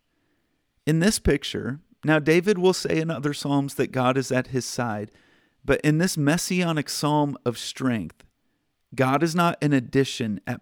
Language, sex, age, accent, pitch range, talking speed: English, male, 40-59, American, 125-155 Hz, 165 wpm